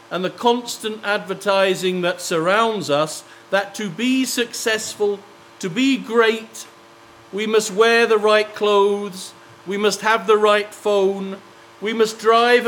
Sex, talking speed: male, 135 wpm